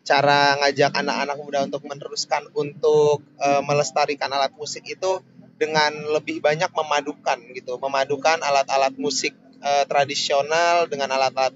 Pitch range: 140-155 Hz